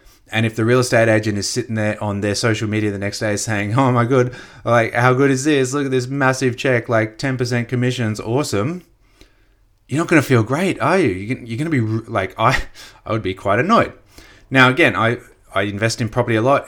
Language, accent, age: English, Australian, 30-49